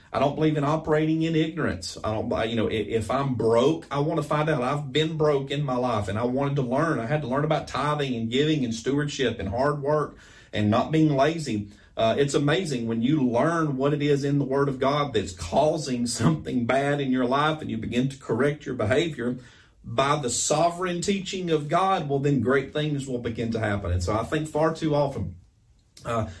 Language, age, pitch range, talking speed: English, 30-49, 105-140 Hz, 220 wpm